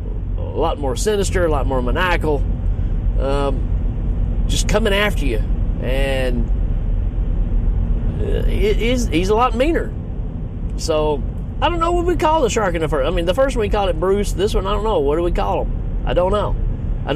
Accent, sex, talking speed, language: American, male, 190 wpm, English